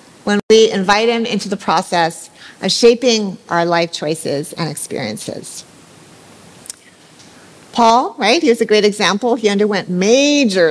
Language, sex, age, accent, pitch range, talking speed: English, female, 50-69, American, 195-240 Hz, 135 wpm